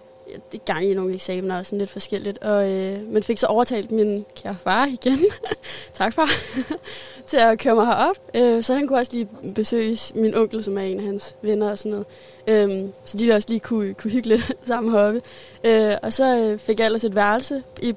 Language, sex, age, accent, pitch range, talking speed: Danish, female, 20-39, native, 200-225 Hz, 215 wpm